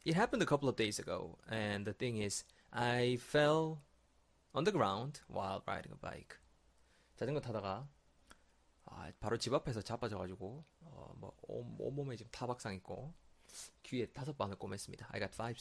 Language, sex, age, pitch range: Korean, male, 20-39, 100-135 Hz